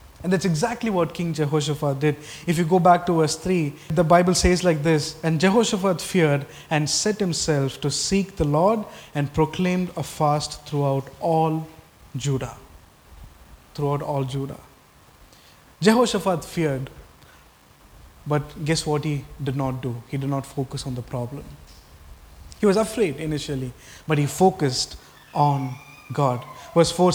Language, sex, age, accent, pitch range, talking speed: English, male, 20-39, Indian, 140-175 Hz, 145 wpm